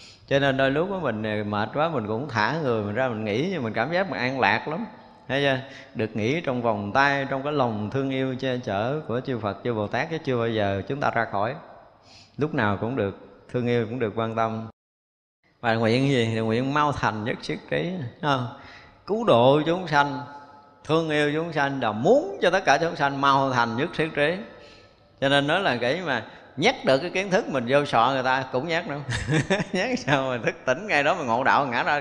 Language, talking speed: Vietnamese, 230 wpm